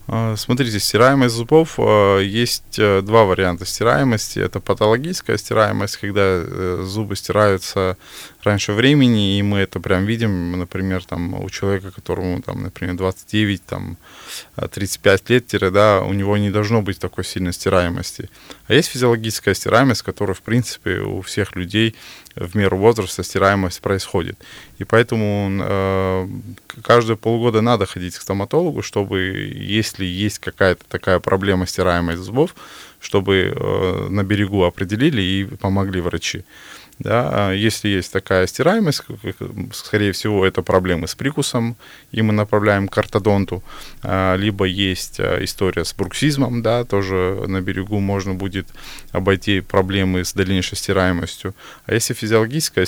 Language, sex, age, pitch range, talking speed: Russian, male, 20-39, 95-110 Hz, 120 wpm